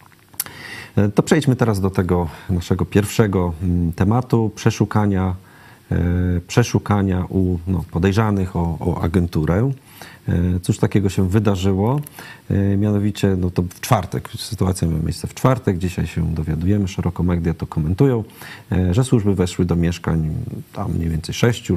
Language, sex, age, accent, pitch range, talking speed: Polish, male, 40-59, native, 90-110 Hz, 125 wpm